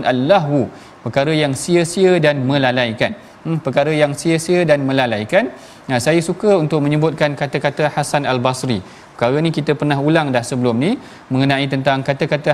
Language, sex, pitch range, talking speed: Malayalam, male, 135-165 Hz, 155 wpm